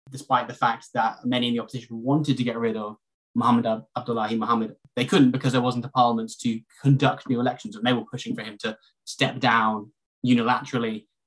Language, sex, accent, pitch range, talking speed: English, male, British, 115-140 Hz, 195 wpm